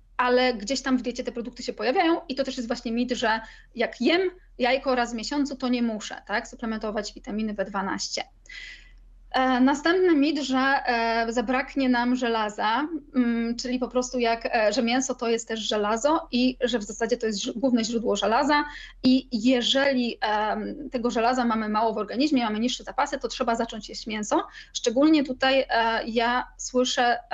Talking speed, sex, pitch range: 160 wpm, female, 230-270 Hz